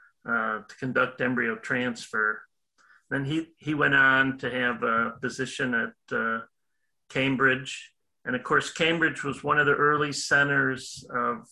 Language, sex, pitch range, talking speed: English, male, 125-155 Hz, 140 wpm